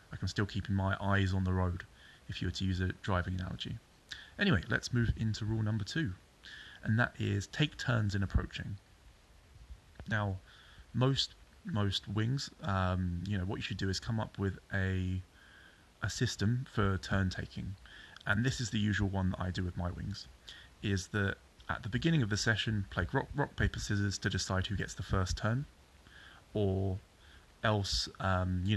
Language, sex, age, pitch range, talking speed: English, male, 20-39, 95-110 Hz, 185 wpm